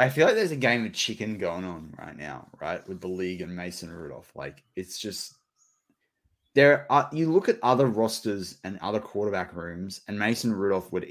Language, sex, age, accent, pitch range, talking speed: English, male, 20-39, Australian, 90-110 Hz, 200 wpm